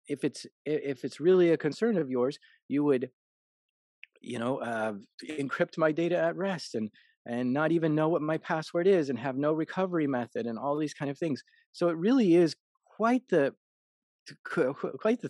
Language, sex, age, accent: English, male, 30-49, American